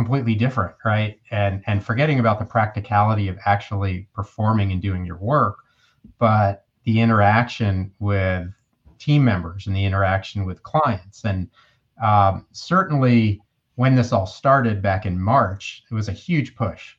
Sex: male